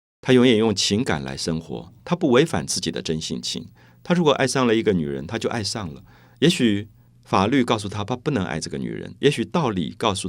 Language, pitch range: Chinese, 80-110 Hz